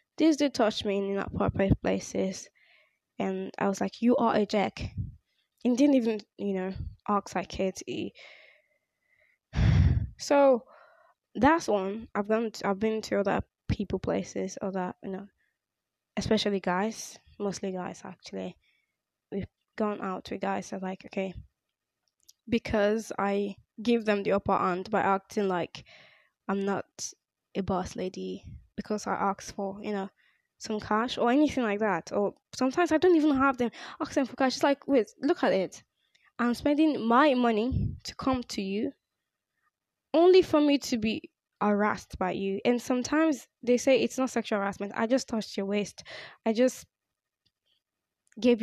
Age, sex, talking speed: 10-29, female, 155 wpm